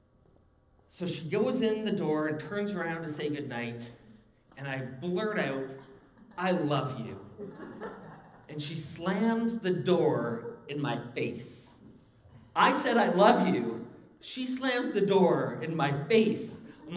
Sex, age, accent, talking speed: male, 40-59, American, 140 wpm